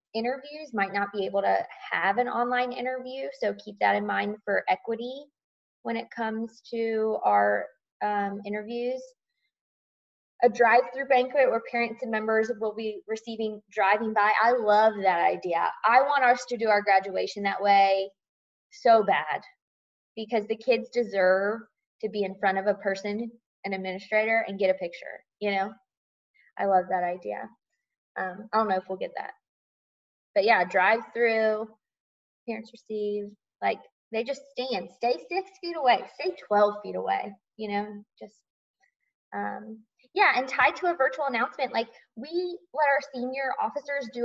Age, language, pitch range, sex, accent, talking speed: 20-39, English, 200-255 Hz, female, American, 160 wpm